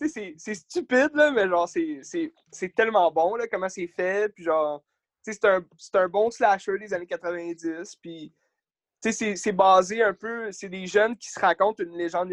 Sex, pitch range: male, 175-220 Hz